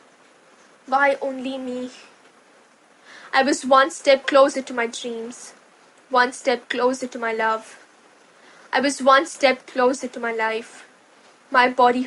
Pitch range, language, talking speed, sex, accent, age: 245-280 Hz, Hindi, 135 wpm, female, native, 10-29